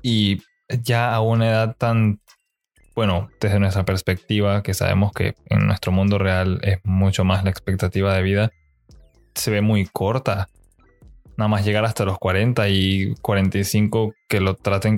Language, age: Spanish, 20-39